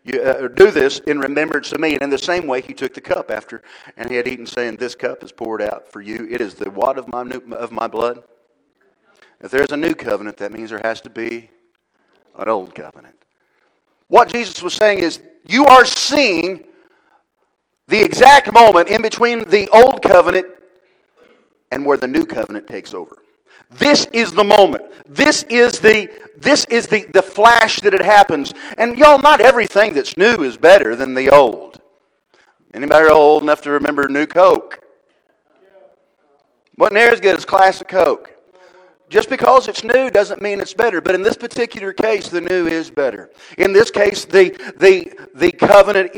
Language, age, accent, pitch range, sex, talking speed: English, 50-69, American, 160-260 Hz, male, 180 wpm